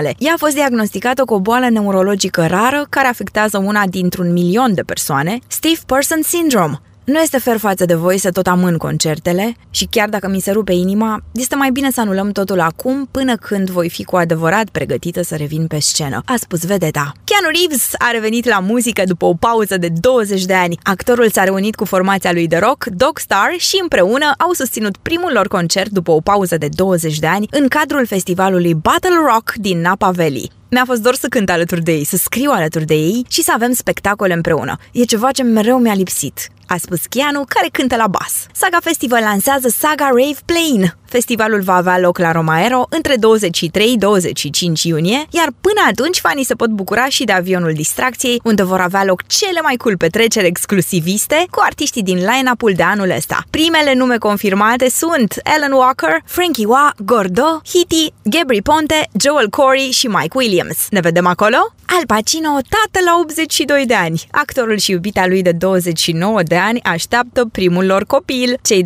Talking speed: 185 wpm